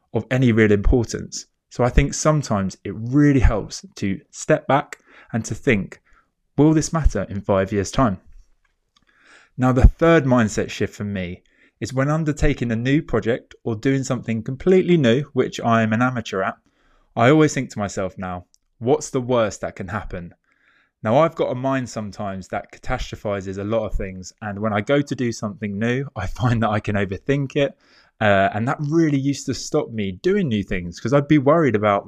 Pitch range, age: 105-140 Hz, 20-39